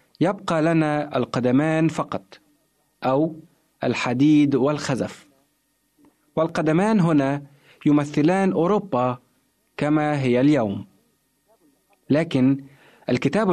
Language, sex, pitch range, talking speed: Arabic, male, 135-180 Hz, 70 wpm